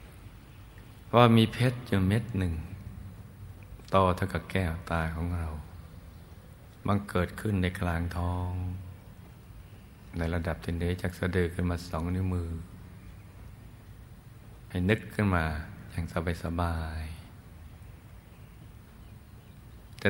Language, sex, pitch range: Thai, male, 85-100 Hz